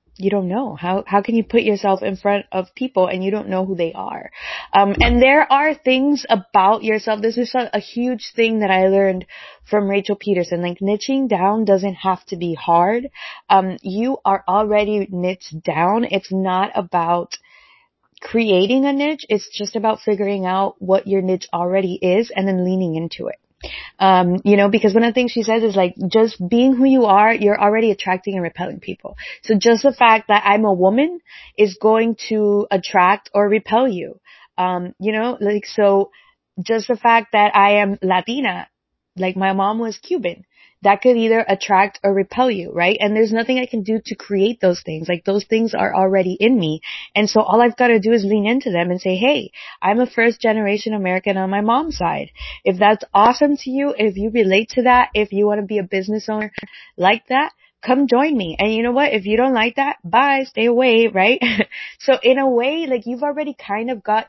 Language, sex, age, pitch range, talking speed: English, female, 20-39, 195-235 Hz, 205 wpm